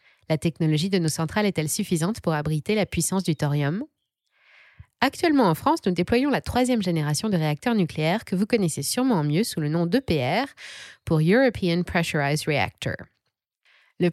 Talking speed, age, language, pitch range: 160 wpm, 20-39, French, 165-225 Hz